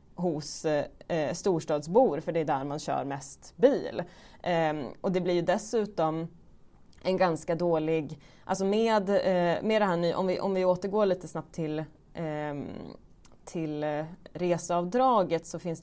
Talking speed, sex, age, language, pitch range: 150 wpm, female, 20-39, Swedish, 155-185 Hz